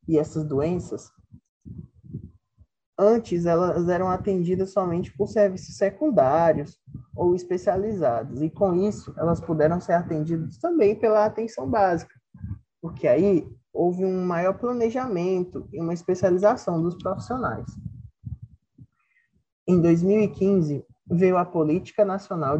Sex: male